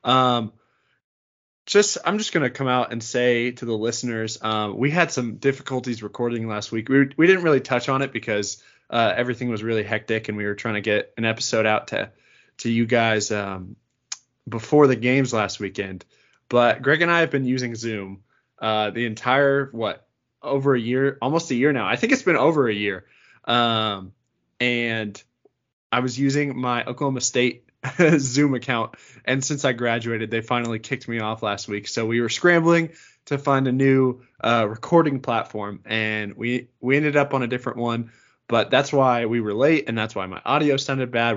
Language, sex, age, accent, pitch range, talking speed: English, male, 20-39, American, 110-130 Hz, 195 wpm